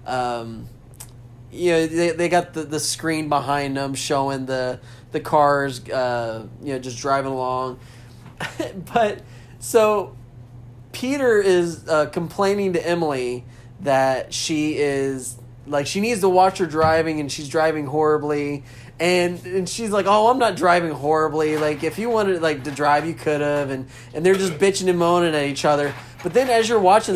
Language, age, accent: English, 20-39, American